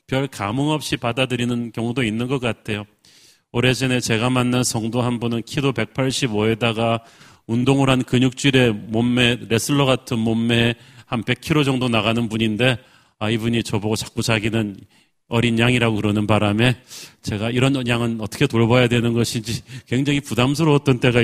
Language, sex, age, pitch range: Korean, male, 40-59, 115-135 Hz